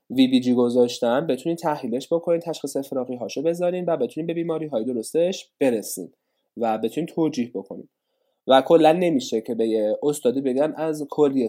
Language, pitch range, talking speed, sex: Persian, 125-175 Hz, 155 wpm, male